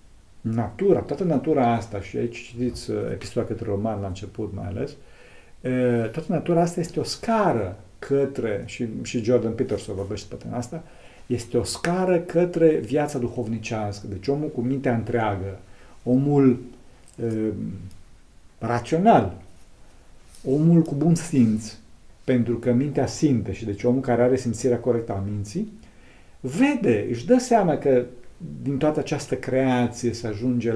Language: Romanian